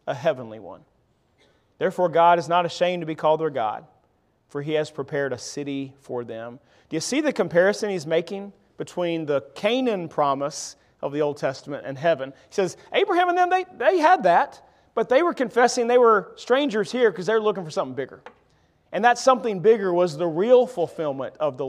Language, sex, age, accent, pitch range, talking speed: English, male, 40-59, American, 140-220 Hz, 195 wpm